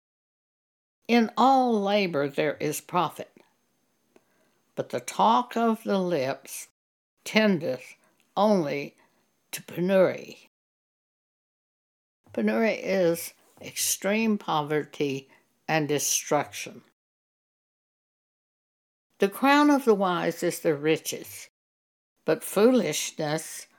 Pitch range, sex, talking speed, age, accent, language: 160-220 Hz, female, 80 wpm, 60-79, American, English